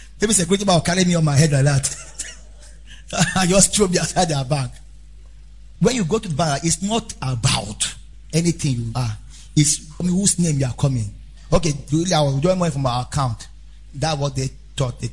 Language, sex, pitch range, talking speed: English, male, 125-170 Hz, 200 wpm